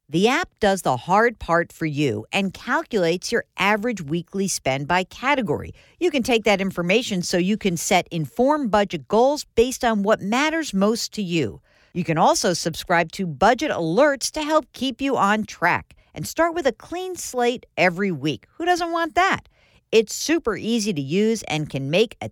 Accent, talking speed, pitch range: American, 185 wpm, 165-260 Hz